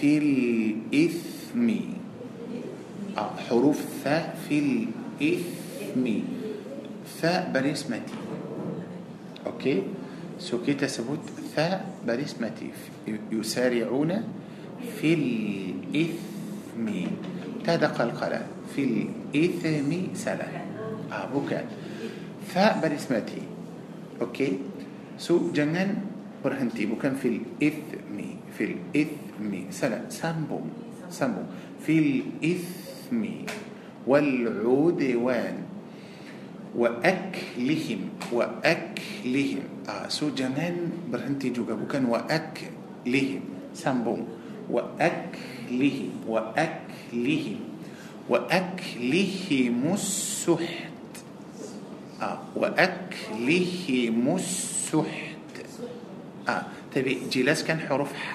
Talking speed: 65 wpm